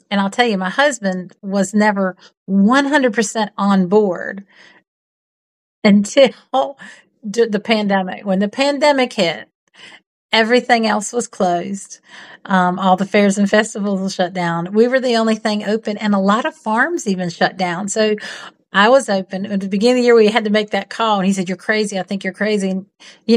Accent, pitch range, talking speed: American, 185-225 Hz, 180 wpm